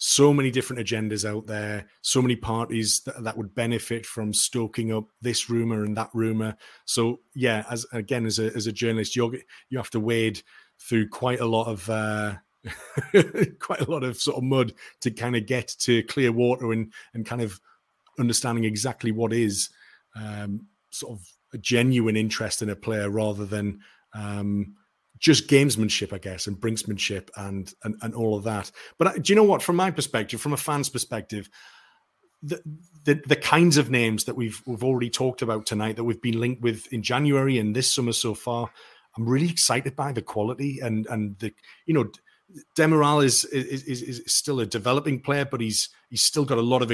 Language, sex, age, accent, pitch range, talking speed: English, male, 30-49, British, 110-130 Hz, 195 wpm